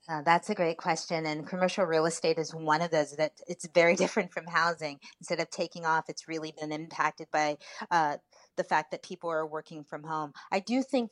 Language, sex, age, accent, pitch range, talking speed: English, female, 30-49, American, 155-180 Hz, 215 wpm